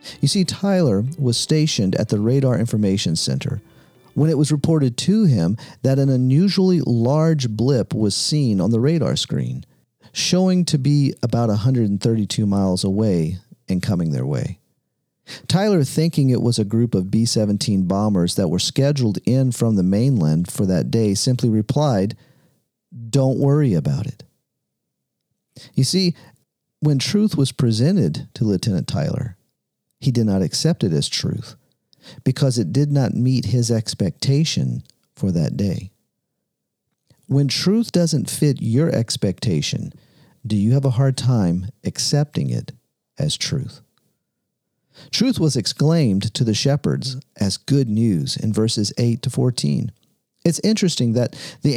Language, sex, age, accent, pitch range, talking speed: English, male, 40-59, American, 110-150 Hz, 145 wpm